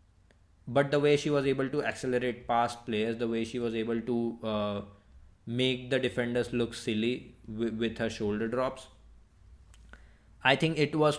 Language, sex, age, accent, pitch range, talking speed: English, male, 20-39, Indian, 105-125 Hz, 165 wpm